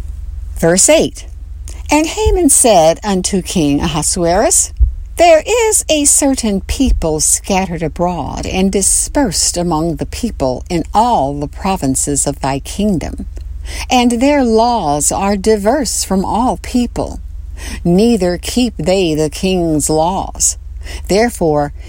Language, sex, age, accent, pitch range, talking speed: English, female, 60-79, American, 135-225 Hz, 115 wpm